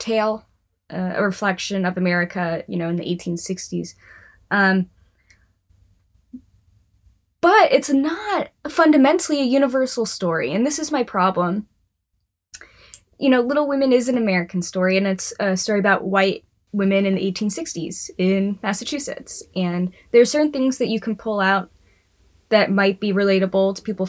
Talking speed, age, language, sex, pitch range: 150 wpm, 20-39, English, female, 175-235 Hz